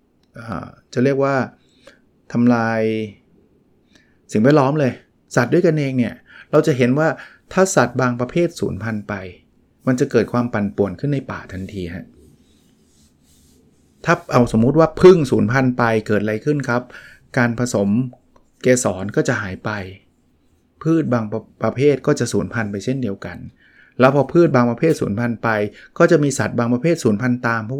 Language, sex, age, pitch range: Thai, male, 20-39, 110-135 Hz